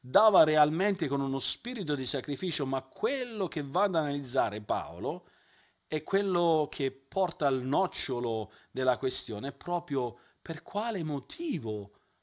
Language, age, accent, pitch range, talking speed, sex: Italian, 40-59, native, 125-165 Hz, 130 wpm, male